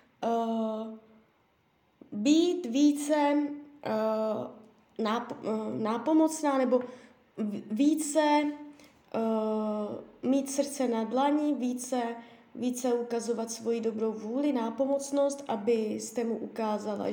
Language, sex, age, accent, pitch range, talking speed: Czech, female, 20-39, native, 220-280 Hz, 85 wpm